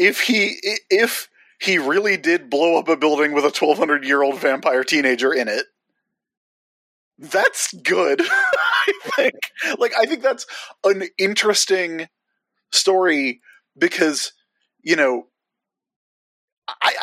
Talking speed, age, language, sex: 115 wpm, 30-49, English, male